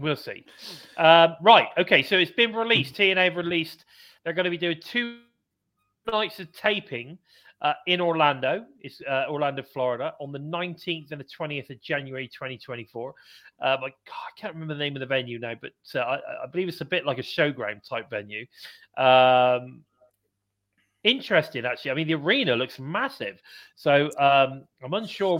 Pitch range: 125-170 Hz